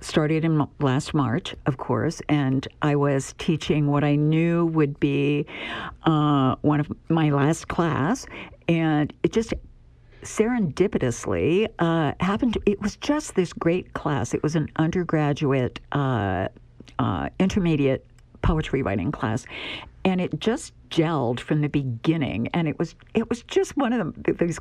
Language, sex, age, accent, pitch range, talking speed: English, female, 60-79, American, 145-195 Hz, 145 wpm